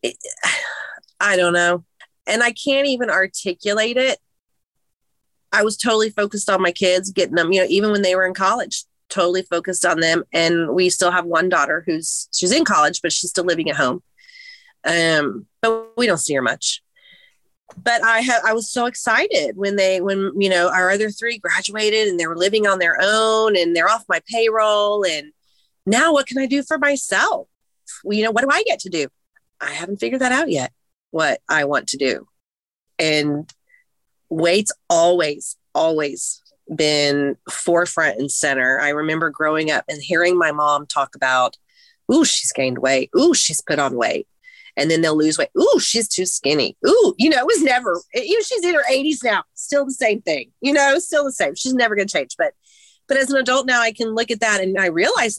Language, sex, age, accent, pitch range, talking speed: English, female, 30-49, American, 175-265 Hz, 200 wpm